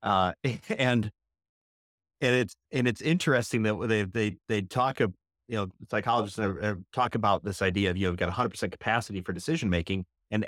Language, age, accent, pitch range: English, 30-49, American, 100-130 Hz